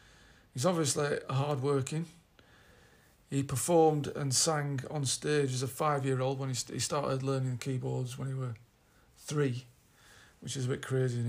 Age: 40-59